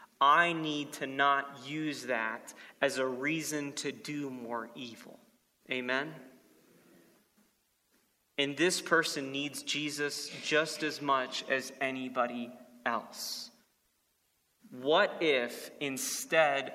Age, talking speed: 30-49, 100 wpm